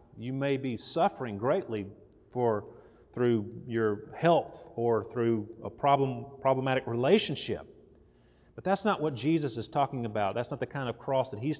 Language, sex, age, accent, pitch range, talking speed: English, male, 40-59, American, 115-150 Hz, 160 wpm